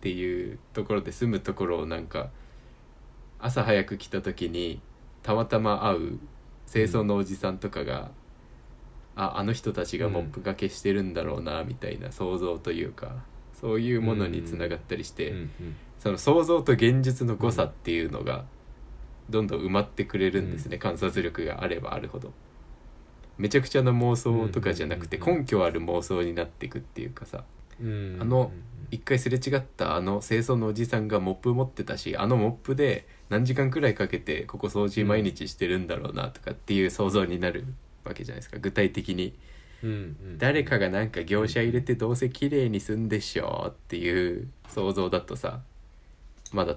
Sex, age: male, 20-39